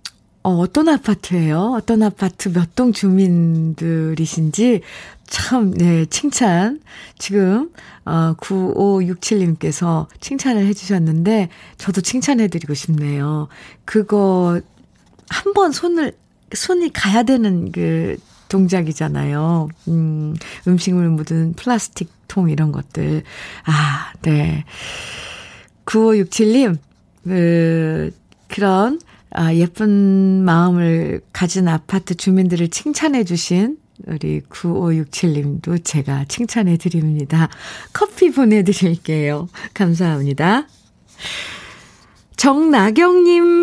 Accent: native